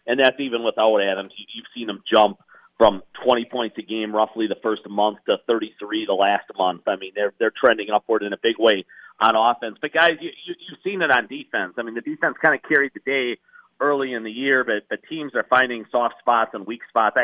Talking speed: 230 wpm